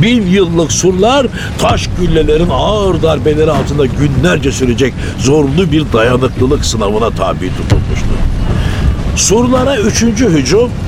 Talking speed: 105 wpm